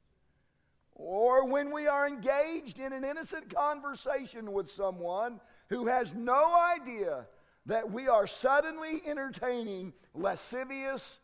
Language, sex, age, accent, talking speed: English, male, 50-69, American, 110 wpm